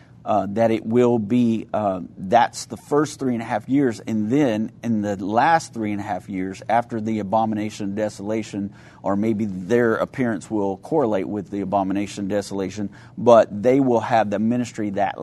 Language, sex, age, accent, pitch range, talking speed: English, male, 40-59, American, 100-120 Hz, 185 wpm